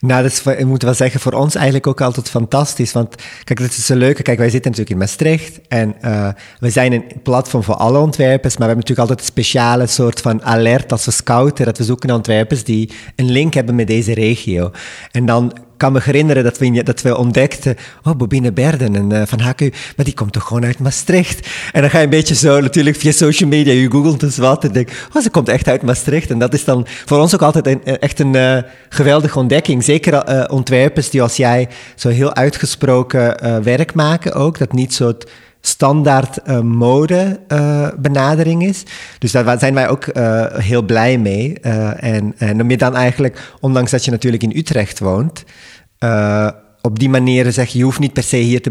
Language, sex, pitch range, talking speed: Dutch, male, 120-140 Hz, 220 wpm